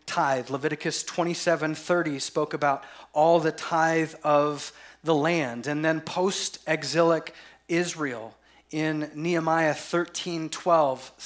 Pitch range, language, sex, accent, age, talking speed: 140-170 Hz, English, male, American, 30-49, 95 wpm